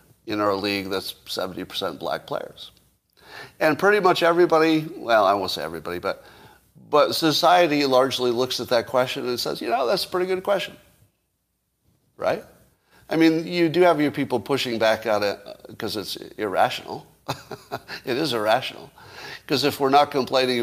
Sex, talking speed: male, 165 wpm